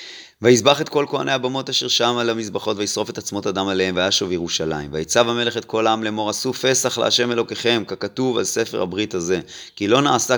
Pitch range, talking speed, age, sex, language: 95-120 Hz, 195 wpm, 30-49, male, Hebrew